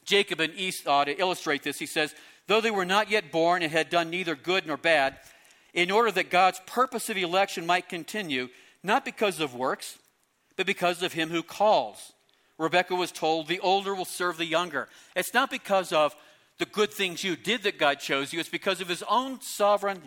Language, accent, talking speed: English, American, 205 wpm